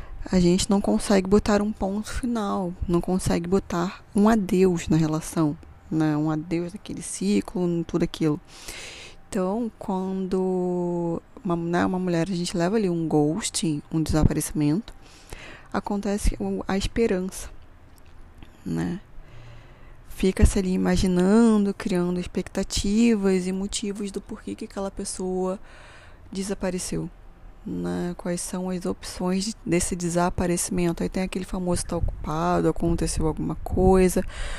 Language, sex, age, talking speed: Portuguese, female, 20-39, 120 wpm